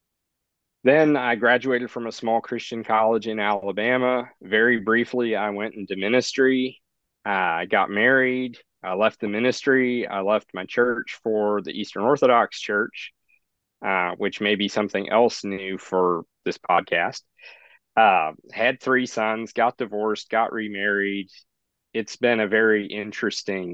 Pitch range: 100-120 Hz